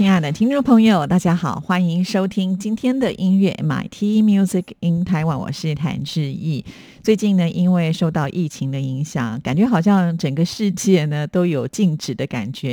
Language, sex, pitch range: Chinese, female, 150-195 Hz